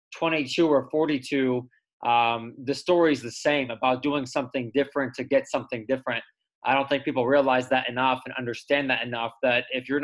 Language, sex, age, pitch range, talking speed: English, male, 20-39, 125-140 Hz, 185 wpm